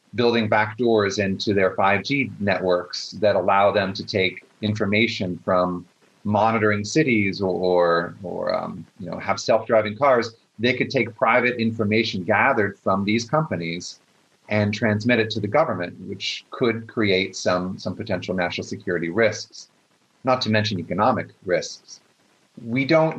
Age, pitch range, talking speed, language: 30-49, 95-115 Hz, 145 wpm, English